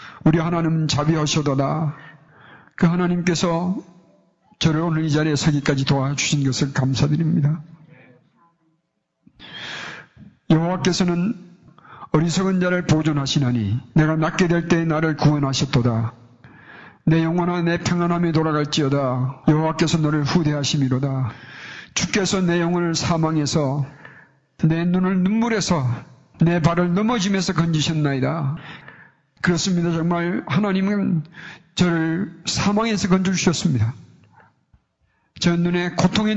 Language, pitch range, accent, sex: Korean, 150-175 Hz, native, male